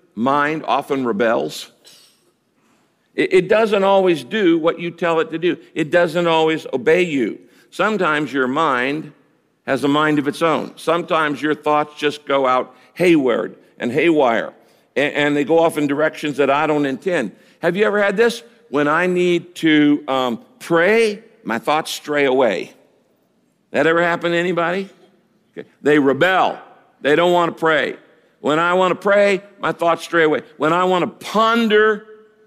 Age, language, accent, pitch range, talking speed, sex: 60-79, English, American, 150-185 Hz, 160 wpm, male